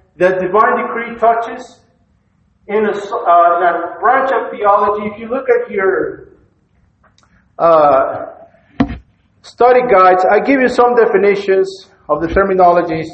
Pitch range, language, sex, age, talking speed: 175-235 Hz, English, male, 50-69, 120 wpm